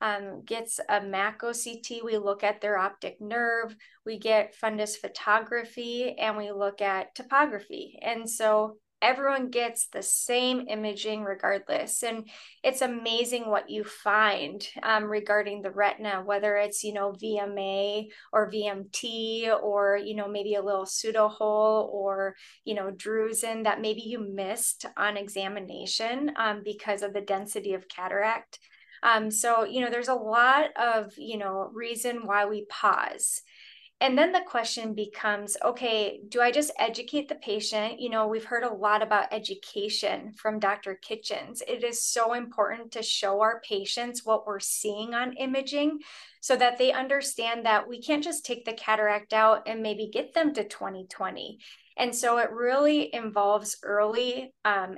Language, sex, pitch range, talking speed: English, female, 210-240 Hz, 155 wpm